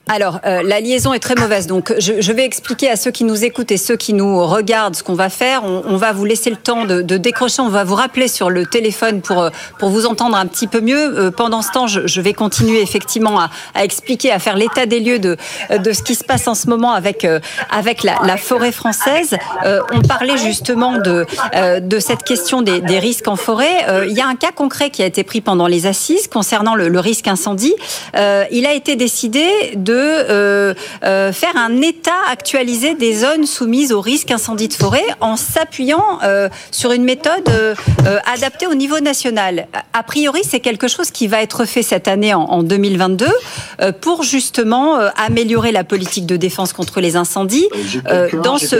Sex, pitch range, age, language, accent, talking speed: female, 195-255 Hz, 40-59, French, French, 210 wpm